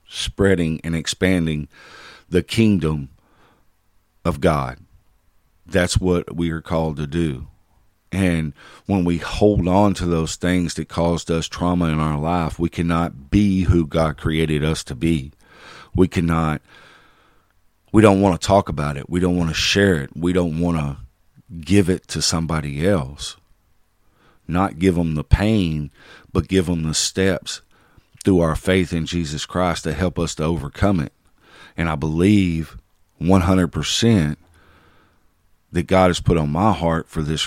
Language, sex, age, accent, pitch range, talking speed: English, male, 50-69, American, 80-95 Hz, 155 wpm